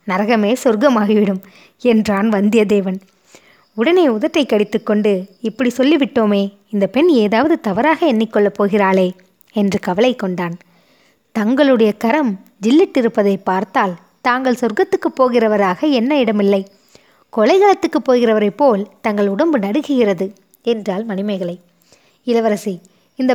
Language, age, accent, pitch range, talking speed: Tamil, 20-39, native, 200-260 Hz, 95 wpm